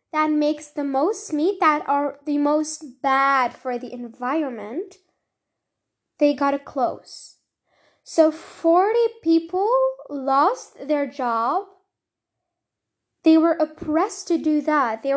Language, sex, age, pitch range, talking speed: English, female, 10-29, 290-355 Hz, 120 wpm